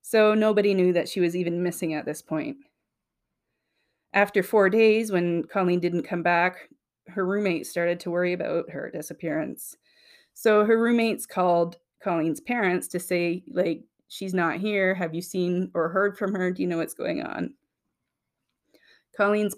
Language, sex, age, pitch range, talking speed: English, female, 30-49, 175-200 Hz, 160 wpm